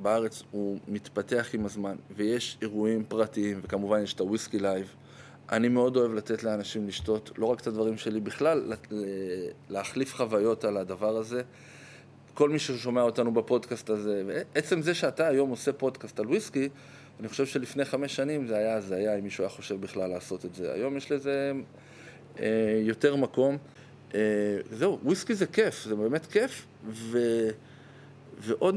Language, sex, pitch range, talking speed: Hebrew, male, 110-135 Hz, 155 wpm